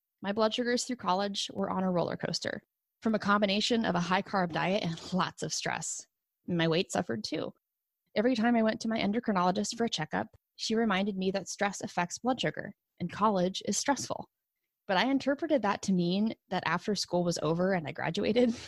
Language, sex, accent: English, female, American